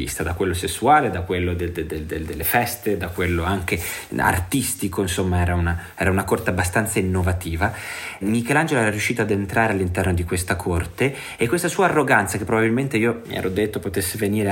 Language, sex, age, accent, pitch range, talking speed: Italian, male, 30-49, native, 90-110 Hz, 160 wpm